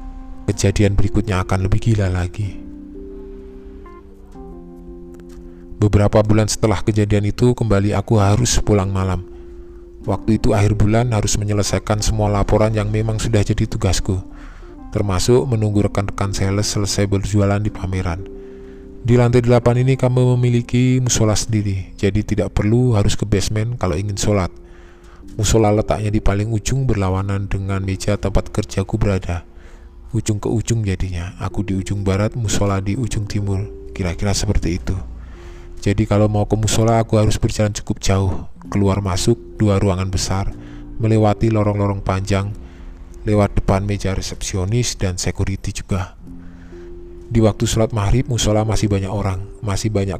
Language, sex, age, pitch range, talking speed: Indonesian, male, 20-39, 95-110 Hz, 135 wpm